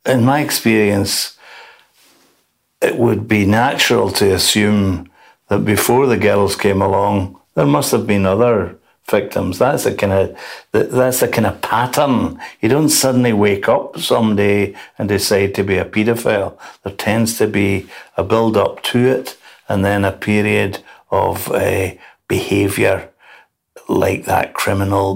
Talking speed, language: 145 wpm, English